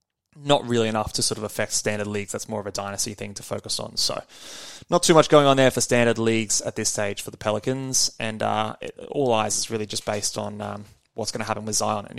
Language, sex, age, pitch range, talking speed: English, male, 20-39, 110-140 Hz, 255 wpm